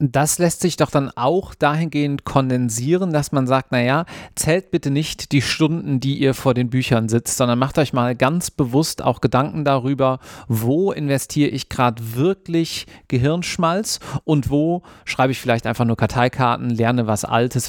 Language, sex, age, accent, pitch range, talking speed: German, male, 40-59, German, 125-160 Hz, 165 wpm